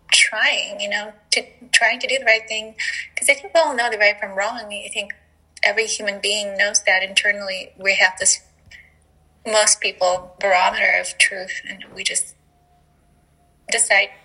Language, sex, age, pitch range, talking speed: English, female, 10-29, 195-230 Hz, 170 wpm